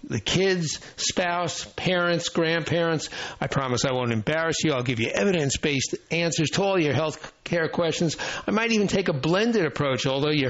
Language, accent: English, American